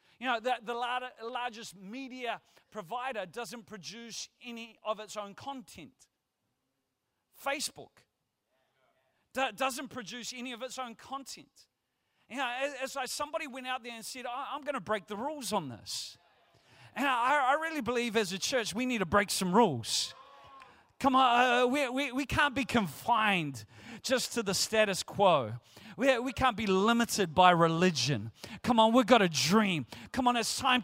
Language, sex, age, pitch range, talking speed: English, male, 40-59, 215-265 Hz, 165 wpm